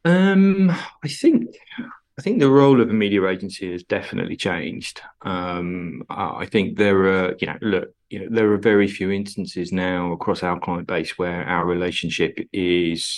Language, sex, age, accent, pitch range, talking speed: English, male, 20-39, British, 90-105 Hz, 175 wpm